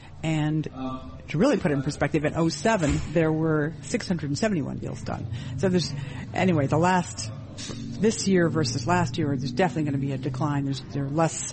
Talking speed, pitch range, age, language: 195 wpm, 140-175 Hz, 50-69, English